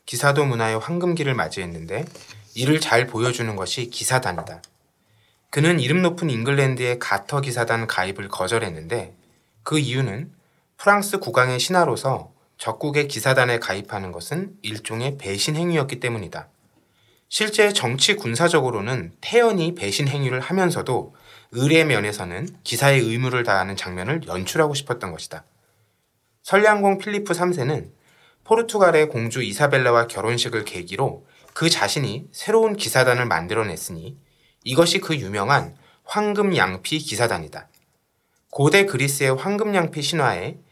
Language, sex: Korean, male